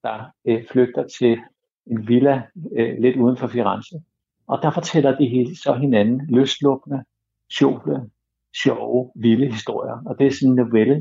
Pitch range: 120-145 Hz